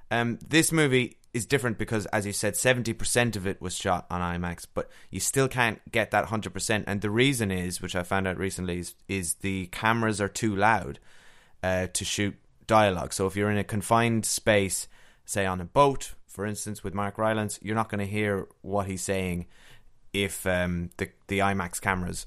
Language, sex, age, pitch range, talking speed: English, male, 20-39, 95-115 Hz, 195 wpm